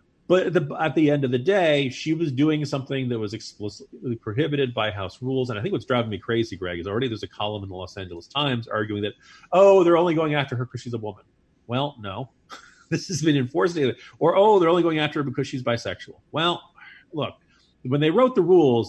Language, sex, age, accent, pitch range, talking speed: English, male, 40-59, American, 115-150 Hz, 230 wpm